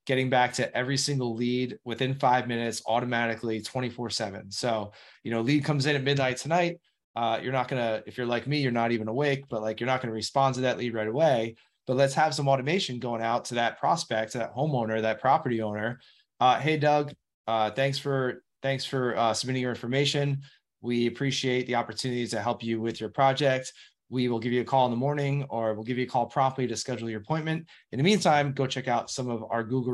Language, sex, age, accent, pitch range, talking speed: English, male, 20-39, American, 115-135 Hz, 225 wpm